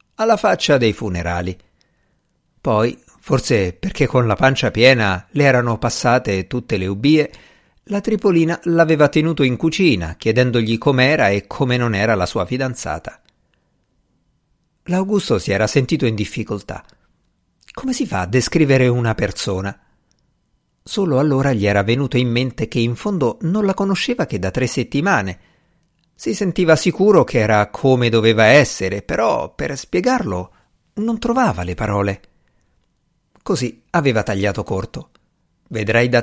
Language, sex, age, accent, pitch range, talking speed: Italian, male, 50-69, native, 105-155 Hz, 135 wpm